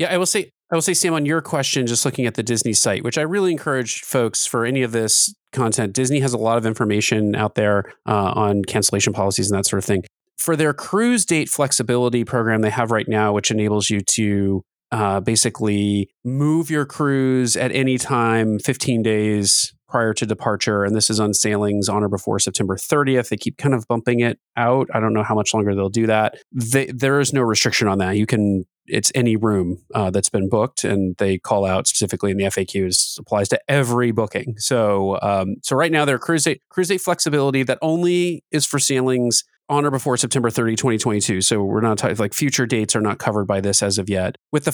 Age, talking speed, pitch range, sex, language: 30-49, 220 wpm, 105-135 Hz, male, English